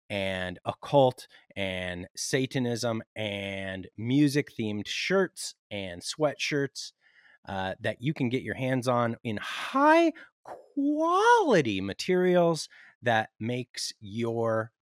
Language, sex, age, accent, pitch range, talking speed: English, male, 30-49, American, 110-155 Hz, 95 wpm